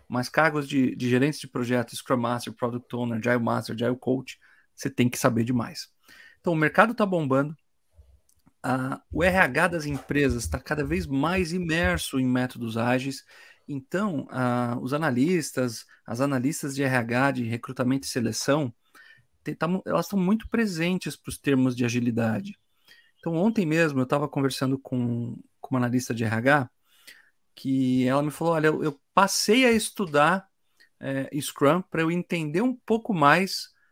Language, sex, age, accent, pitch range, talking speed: Portuguese, male, 40-59, Brazilian, 125-170 Hz, 155 wpm